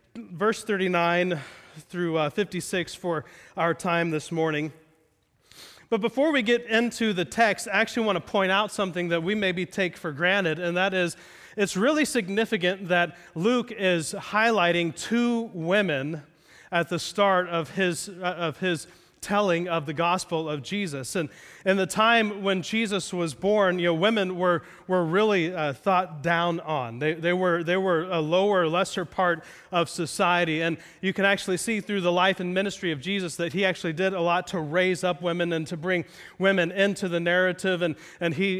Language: English